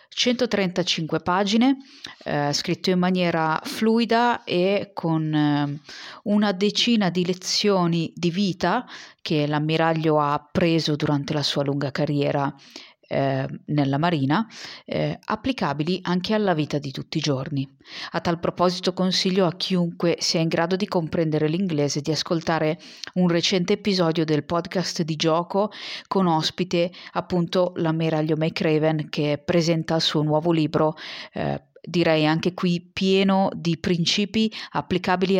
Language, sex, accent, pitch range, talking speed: Italian, female, native, 155-195 Hz, 130 wpm